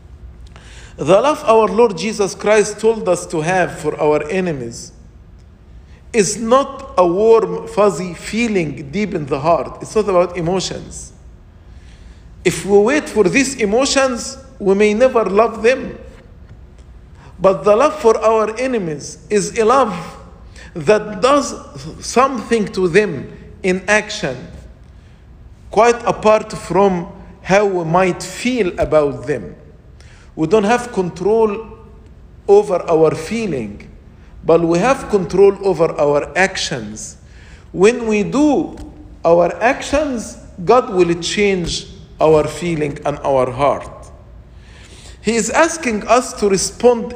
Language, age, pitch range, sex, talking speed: English, 50-69, 150-225 Hz, male, 120 wpm